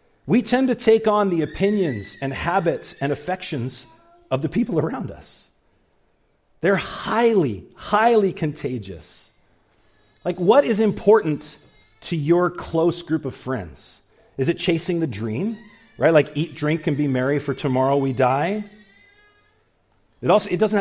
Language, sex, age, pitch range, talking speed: English, male, 40-59, 110-170 Hz, 145 wpm